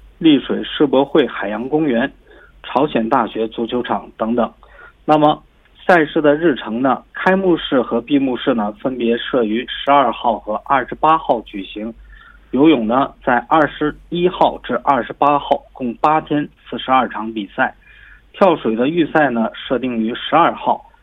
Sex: male